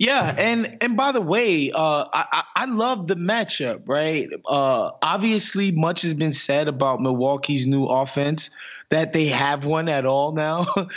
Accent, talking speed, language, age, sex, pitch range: American, 165 wpm, English, 20-39, male, 135-180 Hz